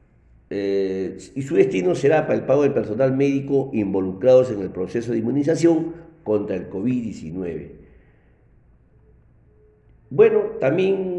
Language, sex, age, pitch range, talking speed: Spanish, male, 50-69, 105-155 Hz, 120 wpm